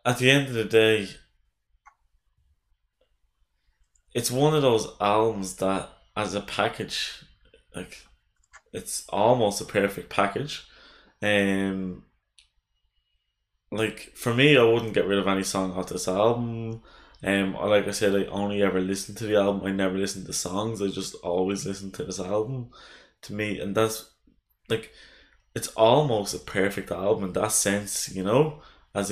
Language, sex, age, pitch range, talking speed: English, male, 20-39, 95-105 Hz, 155 wpm